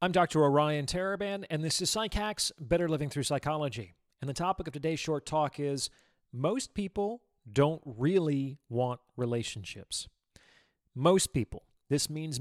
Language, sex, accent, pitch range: English, male, American, 125-175 Hz